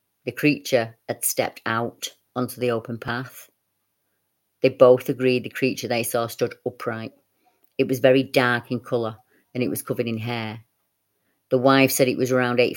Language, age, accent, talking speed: English, 30-49, British, 175 wpm